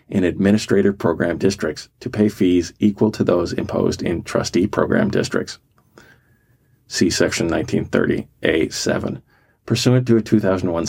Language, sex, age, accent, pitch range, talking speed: English, male, 40-59, American, 90-110 Hz, 120 wpm